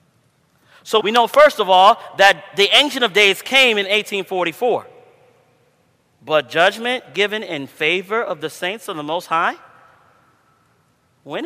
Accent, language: American, English